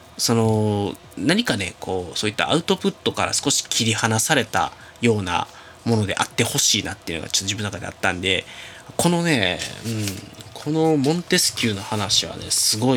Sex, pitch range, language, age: male, 100-125 Hz, Japanese, 20-39